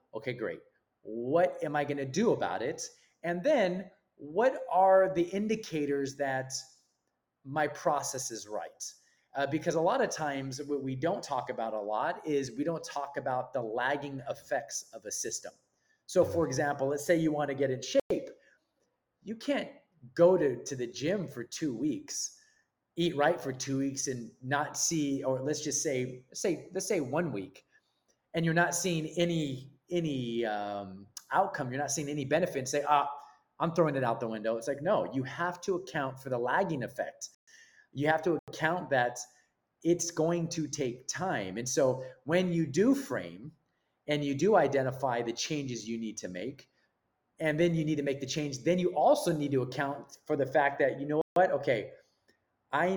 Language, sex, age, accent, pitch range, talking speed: English, male, 30-49, American, 135-170 Hz, 185 wpm